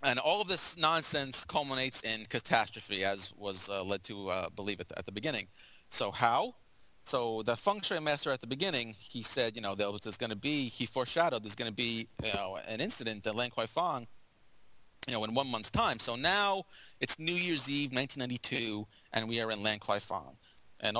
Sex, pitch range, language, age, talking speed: male, 110-150 Hz, English, 30-49, 215 wpm